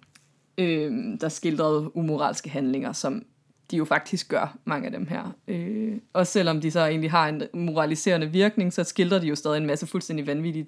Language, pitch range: Danish, 155-200 Hz